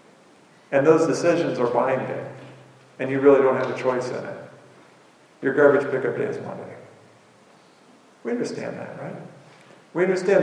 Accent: American